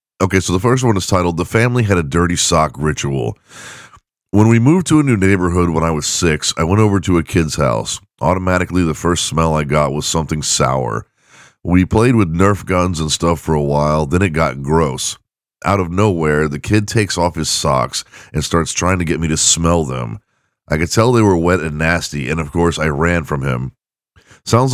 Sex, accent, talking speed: male, American, 215 wpm